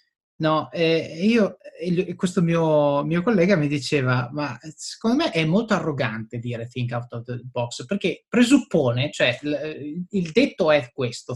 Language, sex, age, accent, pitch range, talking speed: Italian, male, 30-49, native, 145-210 Hz, 150 wpm